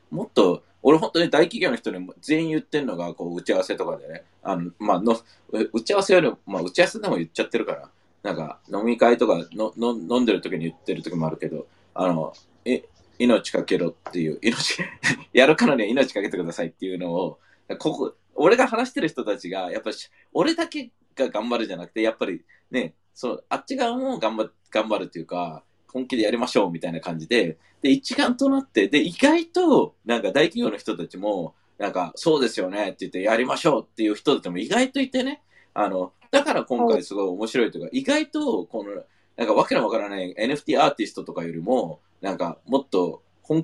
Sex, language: male, Japanese